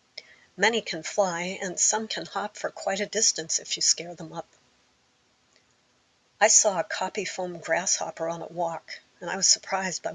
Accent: American